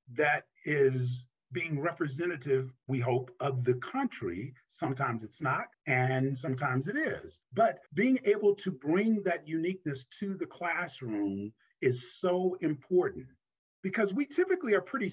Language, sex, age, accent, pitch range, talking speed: English, male, 40-59, American, 135-200 Hz, 135 wpm